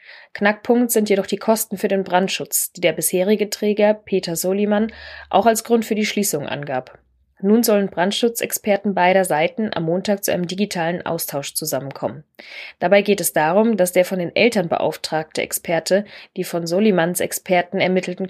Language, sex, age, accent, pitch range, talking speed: German, female, 20-39, German, 165-205 Hz, 160 wpm